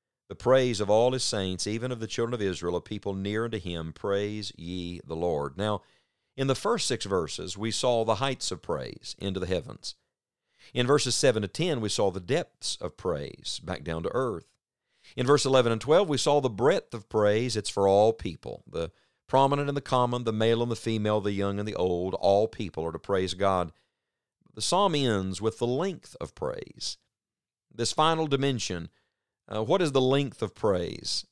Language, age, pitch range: English, 50-69, 95-125 Hz